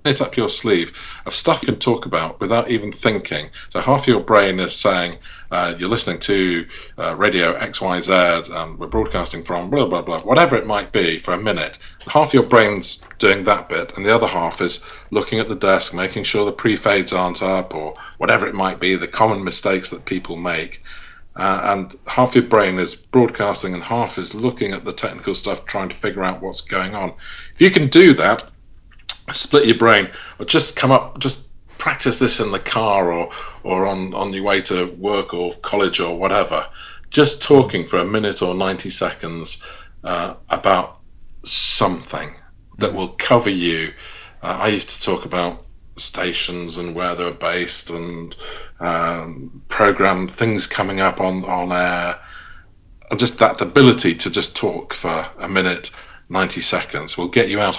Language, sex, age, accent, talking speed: English, male, 40-59, British, 180 wpm